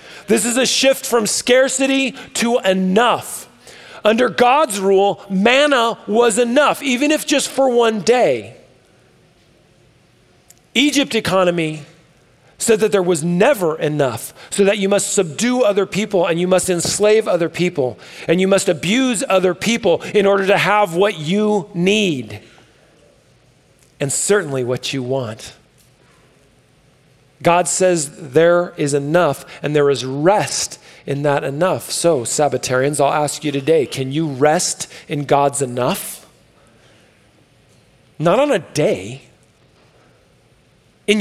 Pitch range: 150-220 Hz